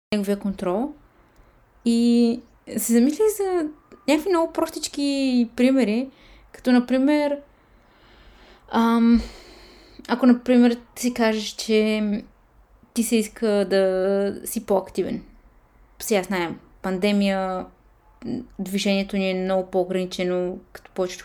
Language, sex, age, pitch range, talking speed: Bulgarian, female, 20-39, 190-240 Hz, 100 wpm